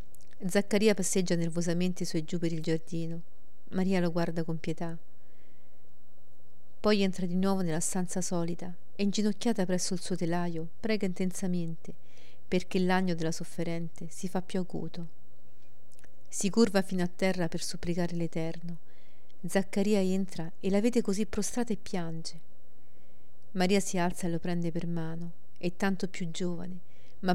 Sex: female